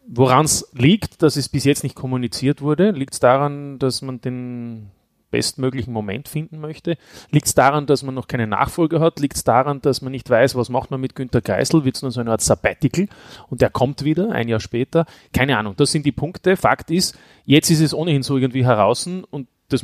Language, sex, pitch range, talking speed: German, male, 120-145 Hz, 220 wpm